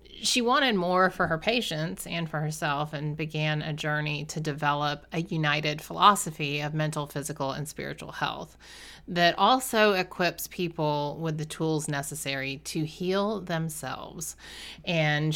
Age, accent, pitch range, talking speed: 30-49, American, 150-180 Hz, 140 wpm